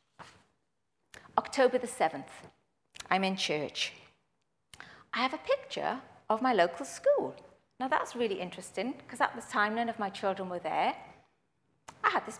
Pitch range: 190-265 Hz